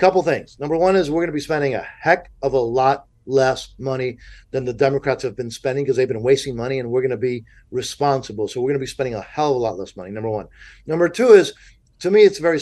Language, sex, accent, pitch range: English, male, American, 130-155 Hz